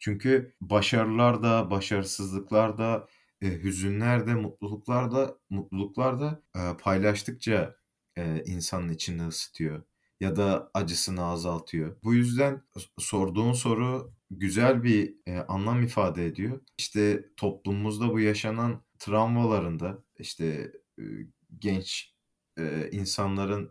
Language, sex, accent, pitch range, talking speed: Turkish, male, native, 95-115 Hz, 85 wpm